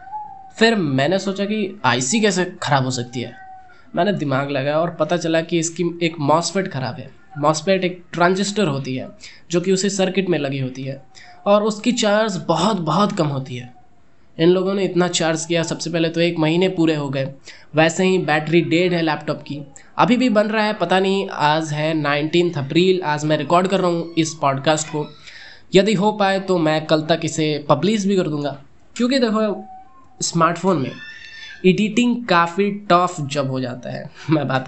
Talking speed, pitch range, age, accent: 190 wpm, 145-195 Hz, 20-39, native